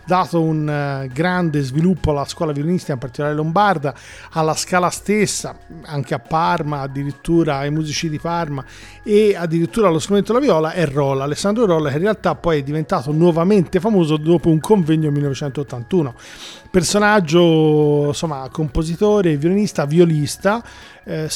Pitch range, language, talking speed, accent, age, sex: 145-185 Hz, Italian, 140 wpm, native, 40-59, male